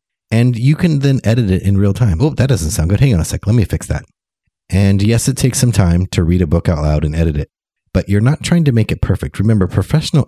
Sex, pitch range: male, 80-110 Hz